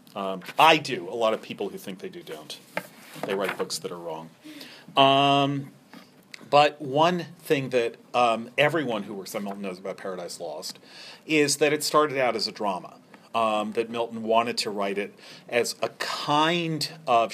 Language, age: English, 40-59